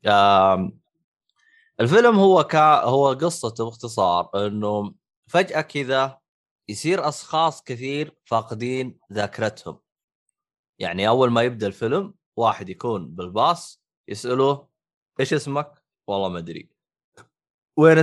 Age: 20-39